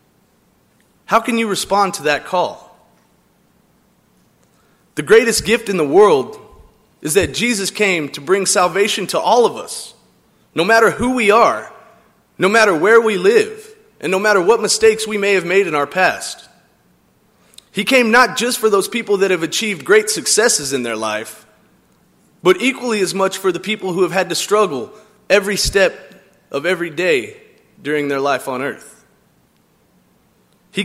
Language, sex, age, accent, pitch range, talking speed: English, male, 30-49, American, 175-225 Hz, 165 wpm